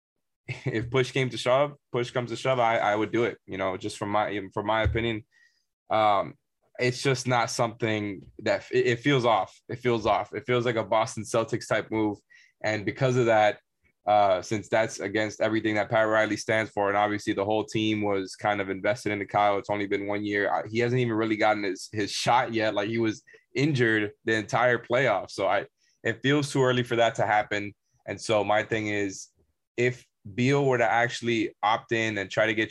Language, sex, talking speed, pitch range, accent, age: English, male, 210 wpm, 105-120 Hz, American, 20-39